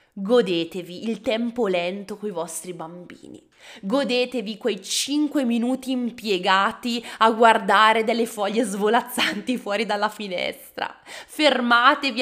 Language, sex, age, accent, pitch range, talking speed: Italian, female, 20-39, native, 200-255 Hz, 110 wpm